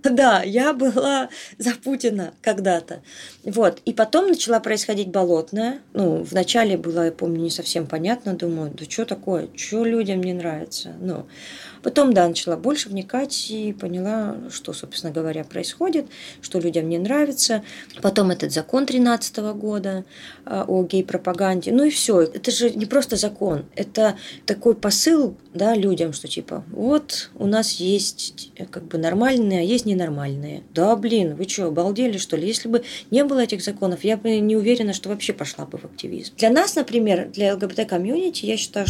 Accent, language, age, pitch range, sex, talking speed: native, Russian, 20-39, 180-235 Hz, female, 165 wpm